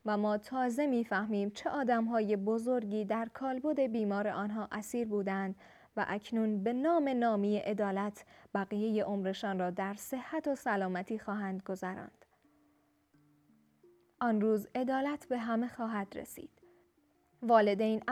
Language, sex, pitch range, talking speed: Persian, female, 200-245 Hz, 125 wpm